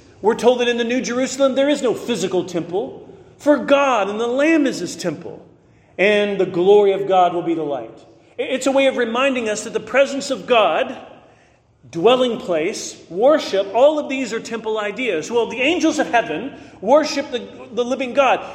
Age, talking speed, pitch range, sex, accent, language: 40-59, 190 wpm, 220-280 Hz, male, American, English